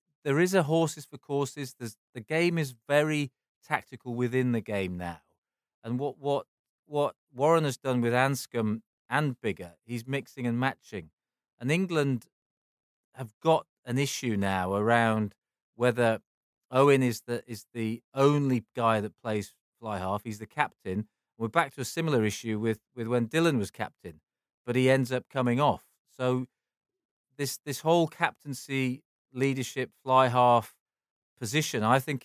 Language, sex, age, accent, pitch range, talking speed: English, male, 40-59, British, 110-135 Hz, 155 wpm